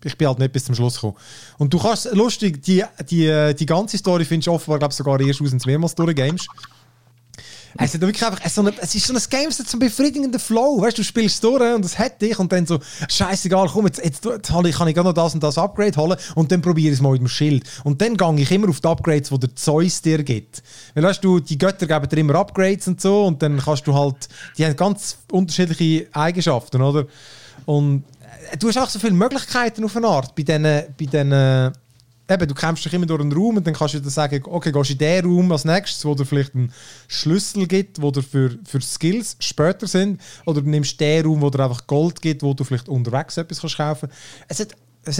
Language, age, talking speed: German, 30-49, 240 wpm